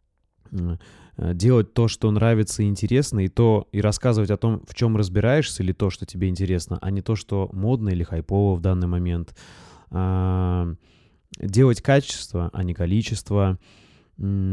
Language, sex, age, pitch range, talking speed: Russian, male, 20-39, 90-110 Hz, 140 wpm